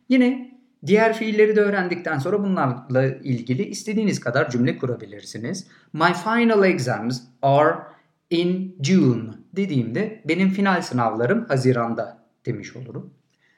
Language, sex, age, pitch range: Turkish, male, 50-69, 130-215 Hz